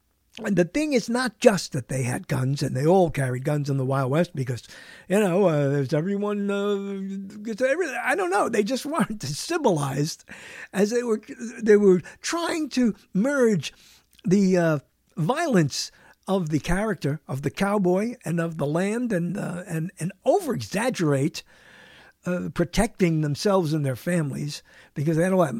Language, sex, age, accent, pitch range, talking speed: English, male, 50-69, American, 160-245 Hz, 170 wpm